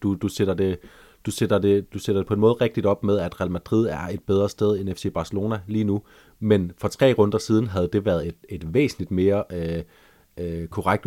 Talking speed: 230 wpm